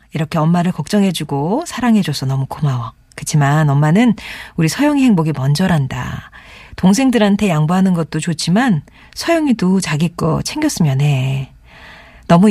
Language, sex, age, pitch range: Korean, female, 40-59, 150-215 Hz